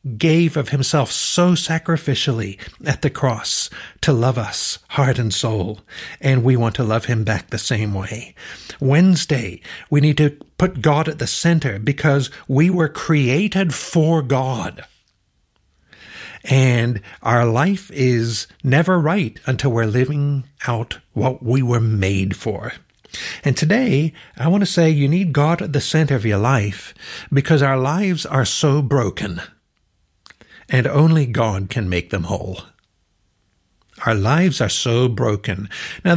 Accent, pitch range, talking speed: American, 110-145 Hz, 145 wpm